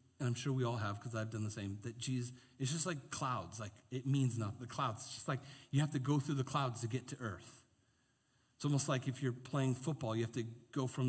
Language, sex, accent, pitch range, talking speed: English, male, American, 120-165 Hz, 255 wpm